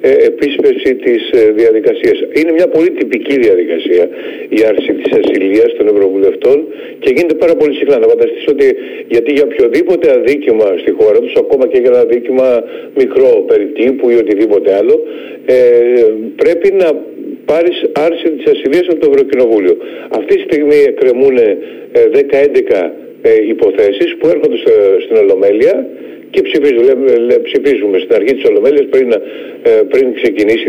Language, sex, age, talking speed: Greek, male, 50-69, 135 wpm